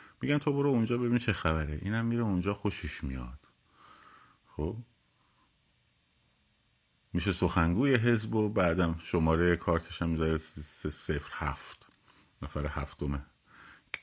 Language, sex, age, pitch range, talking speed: Persian, male, 50-69, 80-95 Hz, 120 wpm